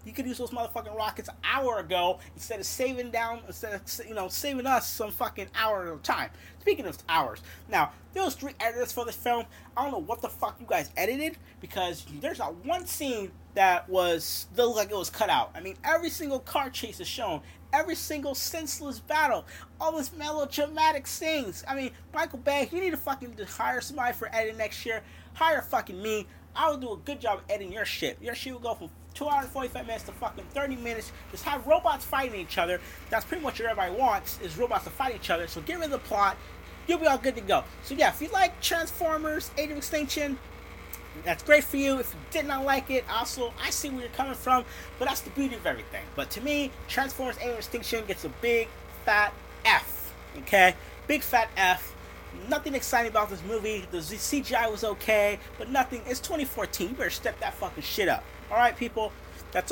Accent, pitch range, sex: American, 215-285 Hz, male